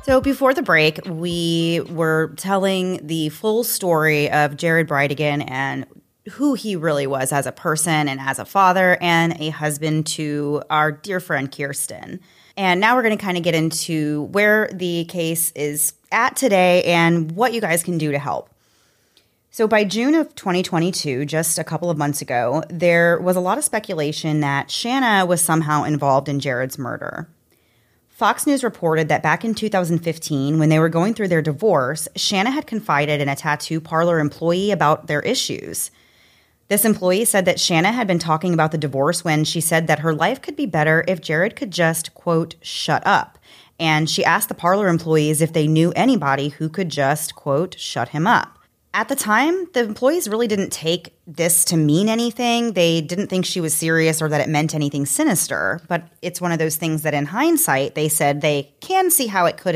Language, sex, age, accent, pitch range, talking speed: English, female, 30-49, American, 150-190 Hz, 190 wpm